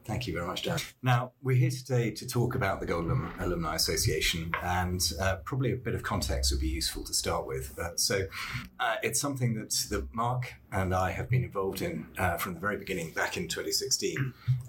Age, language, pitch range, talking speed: 30-49, English, 95-125 Hz, 210 wpm